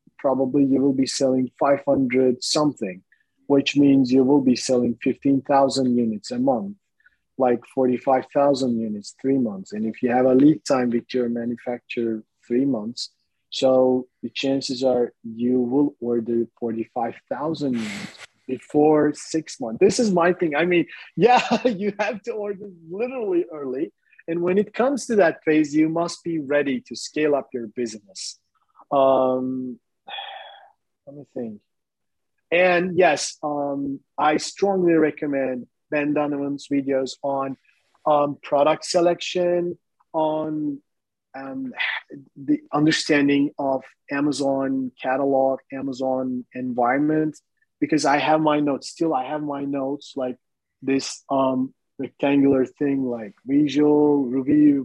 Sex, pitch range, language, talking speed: male, 130-155 Hz, English, 130 wpm